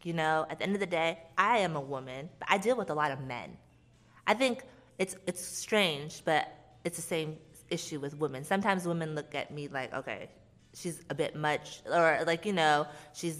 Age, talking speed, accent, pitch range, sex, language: 20-39, 215 wpm, American, 145-180 Hz, female, English